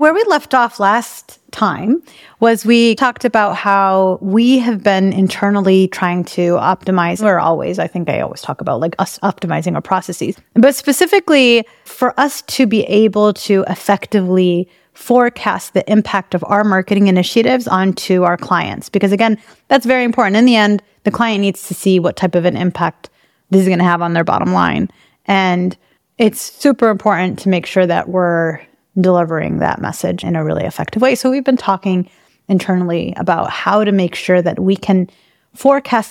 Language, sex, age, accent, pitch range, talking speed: English, female, 30-49, American, 180-225 Hz, 180 wpm